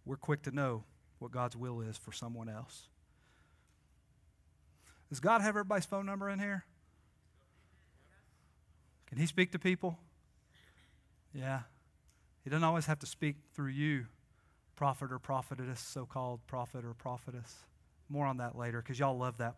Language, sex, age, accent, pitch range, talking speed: English, male, 40-59, American, 125-155 Hz, 145 wpm